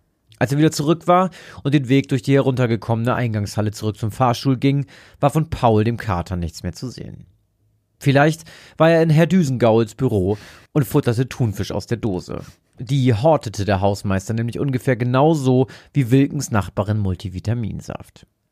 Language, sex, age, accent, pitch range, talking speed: German, male, 40-59, German, 105-140 Hz, 160 wpm